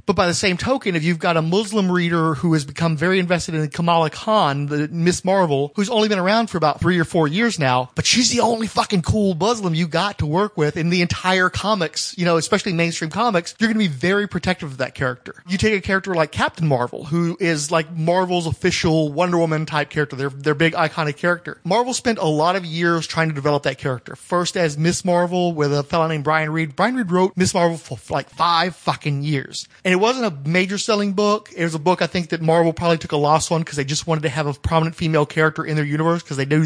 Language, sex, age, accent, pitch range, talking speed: English, male, 30-49, American, 155-185 Hz, 245 wpm